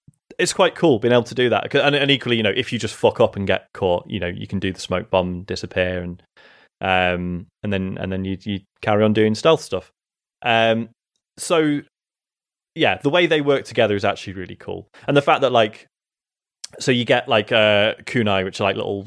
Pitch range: 100-120 Hz